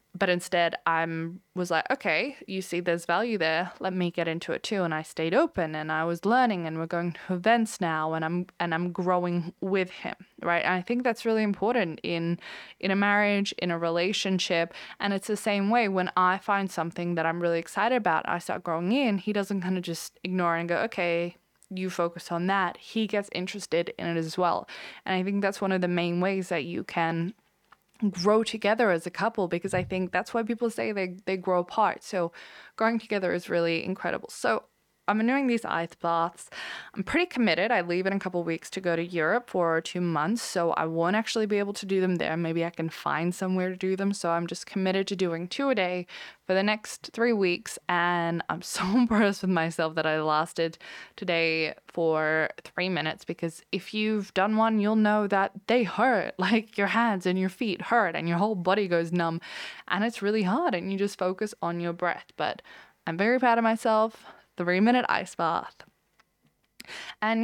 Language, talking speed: English, 210 wpm